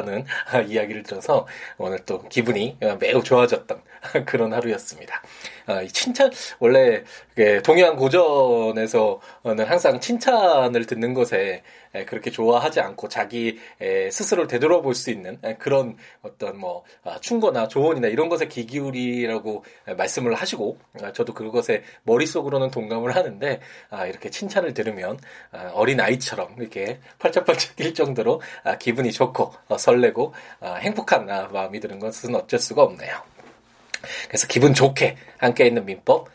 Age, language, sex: 20-39, Korean, male